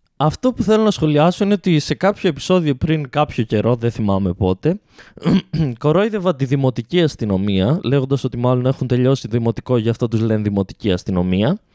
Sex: male